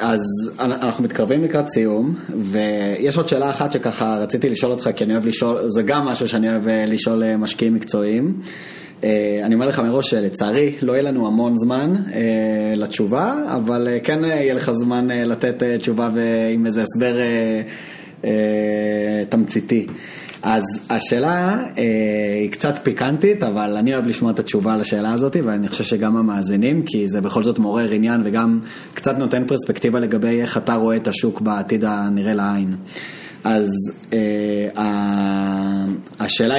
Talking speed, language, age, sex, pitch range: 145 wpm, Hebrew, 20-39, male, 105-130 Hz